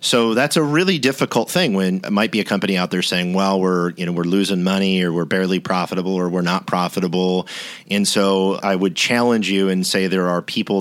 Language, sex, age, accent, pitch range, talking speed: English, male, 40-59, American, 85-95 Hz, 215 wpm